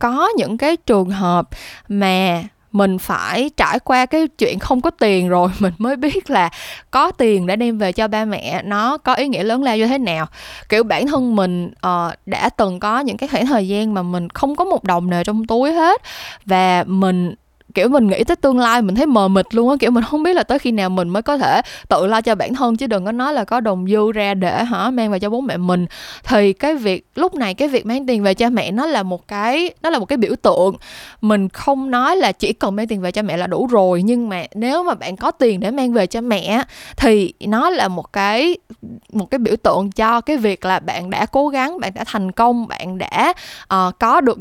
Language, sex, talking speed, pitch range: Vietnamese, female, 245 wpm, 190-260 Hz